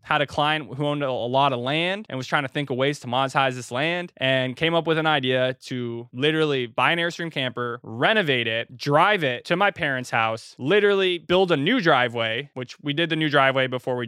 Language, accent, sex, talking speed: English, American, male, 225 wpm